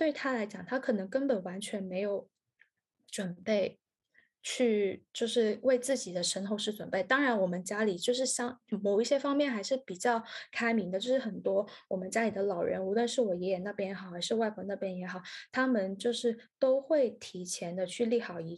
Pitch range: 195-250 Hz